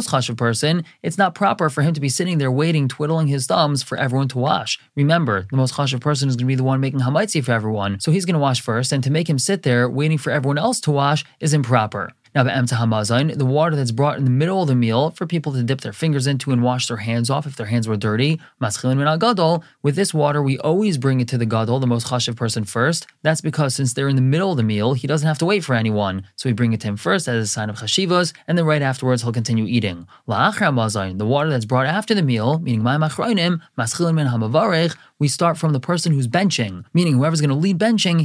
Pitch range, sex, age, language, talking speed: 125-160 Hz, male, 20-39, English, 240 wpm